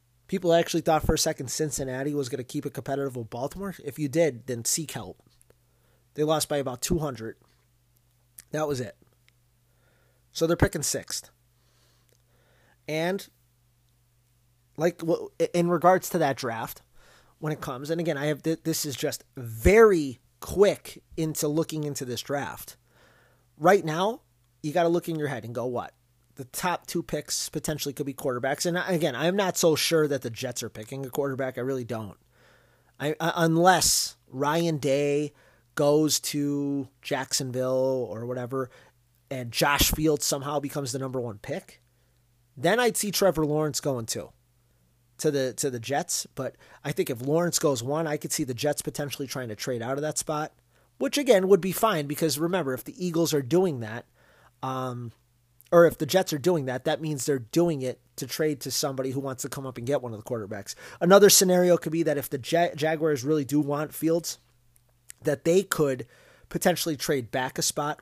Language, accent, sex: English, American, male